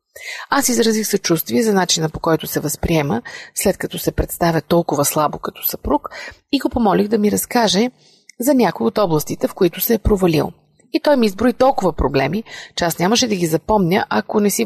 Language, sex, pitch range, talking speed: Bulgarian, female, 165-215 Hz, 190 wpm